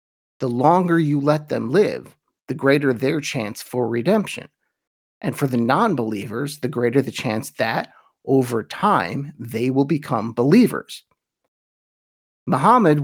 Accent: American